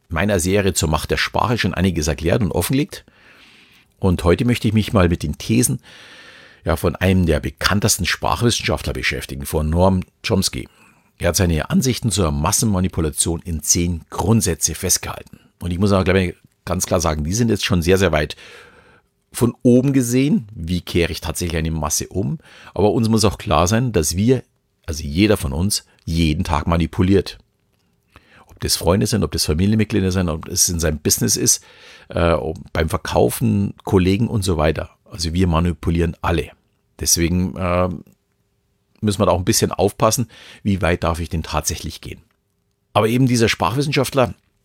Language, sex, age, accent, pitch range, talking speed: German, male, 50-69, German, 80-105 Hz, 170 wpm